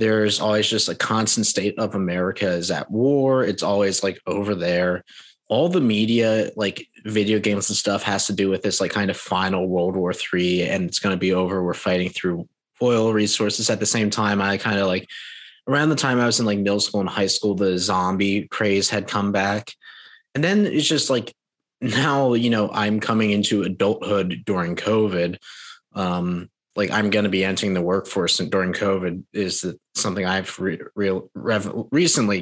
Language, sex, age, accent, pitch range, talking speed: English, male, 20-39, American, 95-110 Hz, 195 wpm